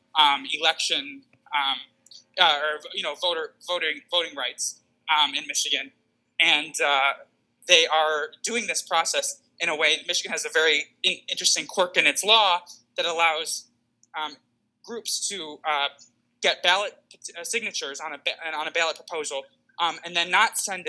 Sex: male